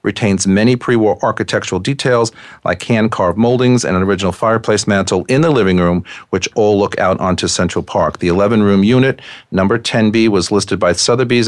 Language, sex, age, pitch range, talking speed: English, male, 40-59, 95-120 Hz, 185 wpm